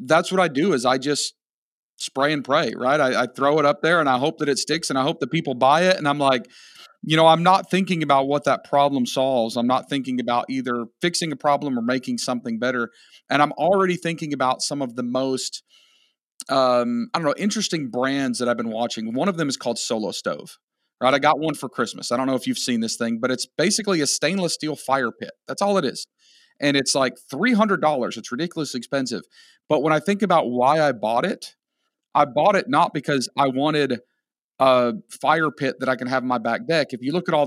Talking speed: 230 wpm